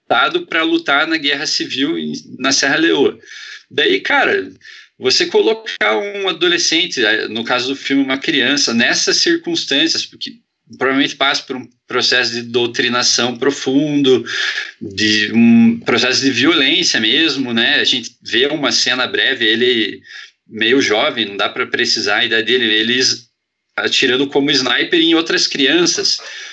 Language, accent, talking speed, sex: Portuguese, Brazilian, 140 wpm, male